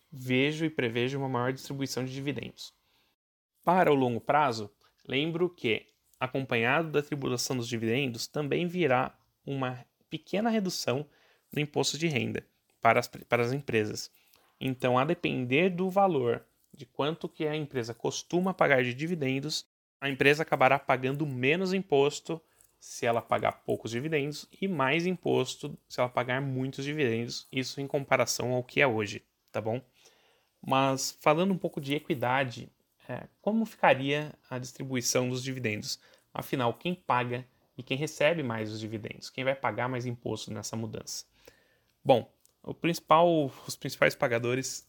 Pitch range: 120-150 Hz